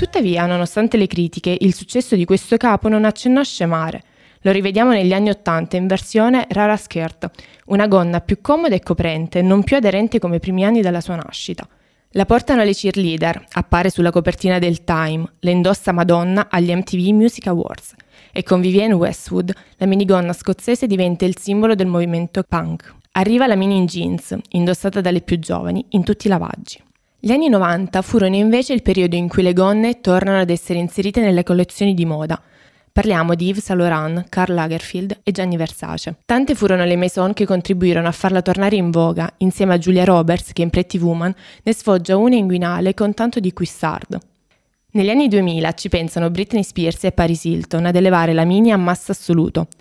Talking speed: 185 wpm